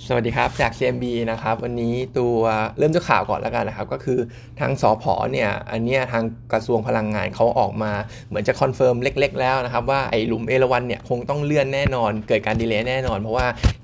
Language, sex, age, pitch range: Thai, male, 20-39, 115-130 Hz